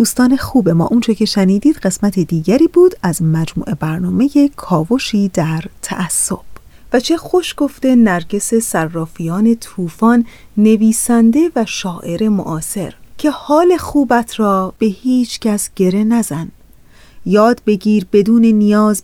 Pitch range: 190-245 Hz